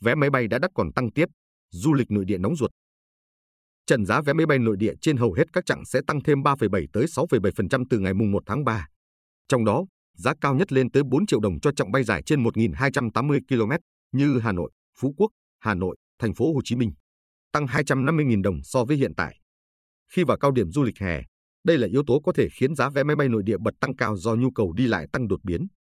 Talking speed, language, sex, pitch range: 245 wpm, Vietnamese, male, 95-140 Hz